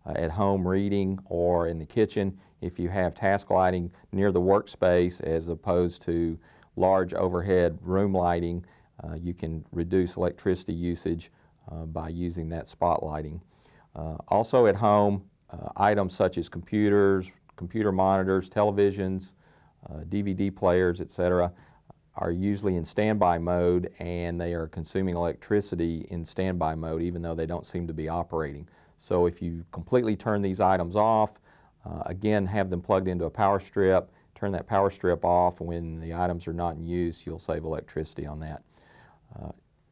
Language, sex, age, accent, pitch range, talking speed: English, male, 40-59, American, 85-100 Hz, 160 wpm